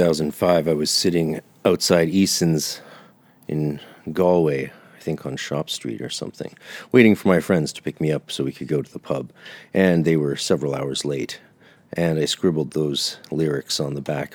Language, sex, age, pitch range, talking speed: English, male, 40-59, 70-85 Hz, 185 wpm